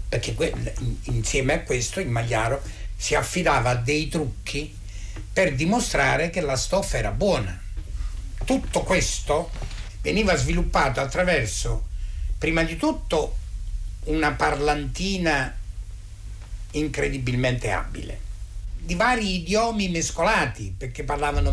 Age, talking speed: 60-79, 100 wpm